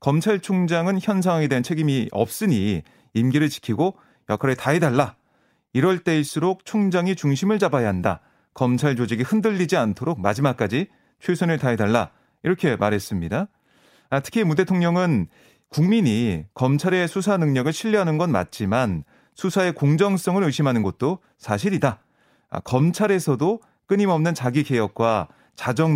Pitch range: 125-180 Hz